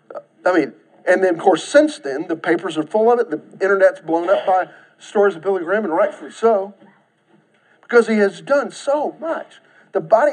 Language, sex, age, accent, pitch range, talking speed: English, male, 40-59, American, 190-300 Hz, 200 wpm